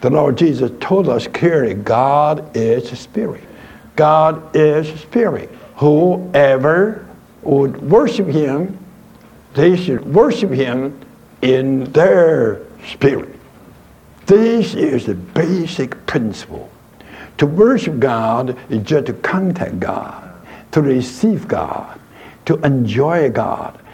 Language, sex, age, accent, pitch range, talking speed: English, male, 60-79, American, 130-180 Hz, 105 wpm